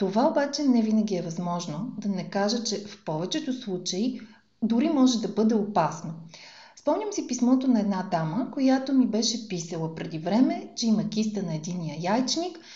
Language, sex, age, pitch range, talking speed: Bulgarian, female, 30-49, 185-255 Hz, 170 wpm